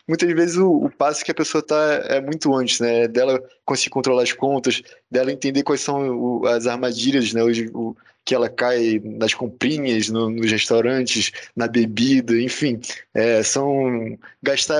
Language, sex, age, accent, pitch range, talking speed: Portuguese, male, 20-39, Brazilian, 120-155 Hz, 165 wpm